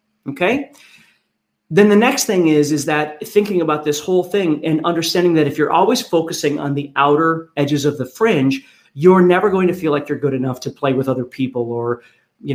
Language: English